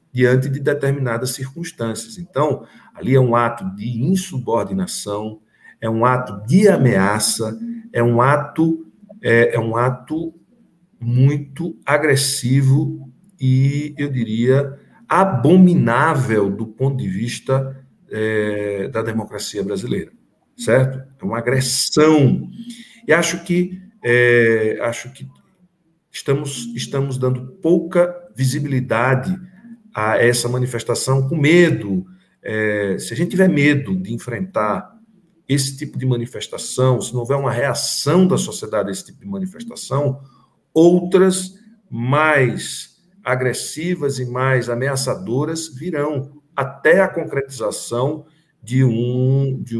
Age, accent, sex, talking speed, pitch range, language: 60-79, Brazilian, male, 100 wpm, 120-160 Hz, Portuguese